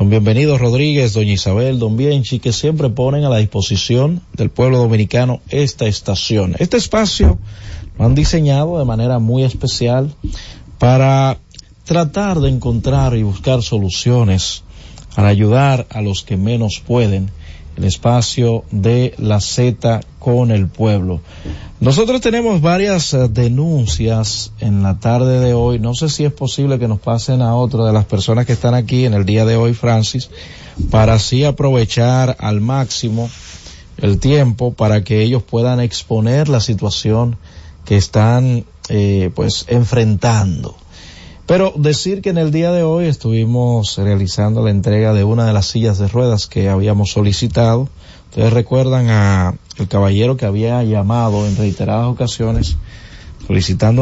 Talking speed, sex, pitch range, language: 145 wpm, male, 100-125 Hz, Spanish